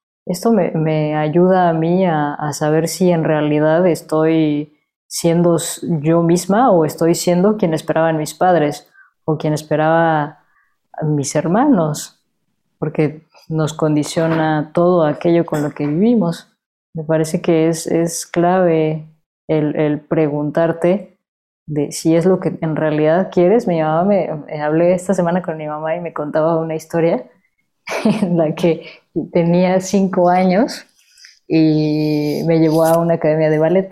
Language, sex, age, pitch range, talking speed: Spanish, female, 20-39, 160-190 Hz, 145 wpm